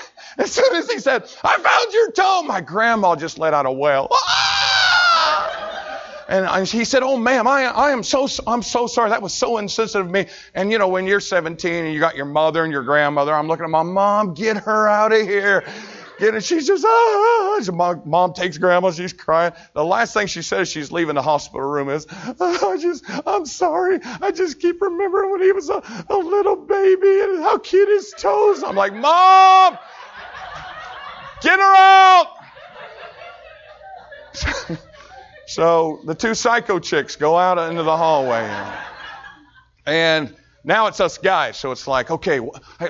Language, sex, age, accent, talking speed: English, male, 40-59, American, 180 wpm